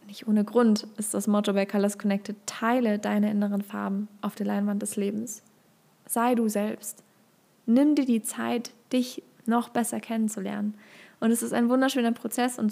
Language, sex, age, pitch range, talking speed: German, female, 20-39, 205-240 Hz, 170 wpm